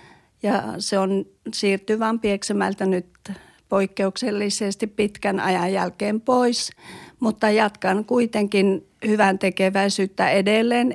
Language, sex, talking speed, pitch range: Finnish, female, 90 wpm, 195-220 Hz